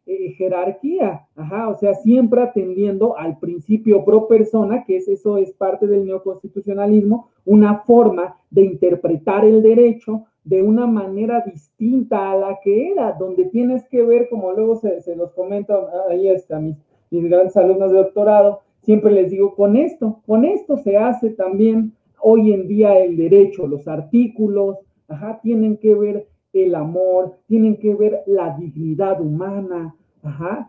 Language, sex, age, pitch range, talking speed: Spanish, male, 40-59, 185-230 Hz, 155 wpm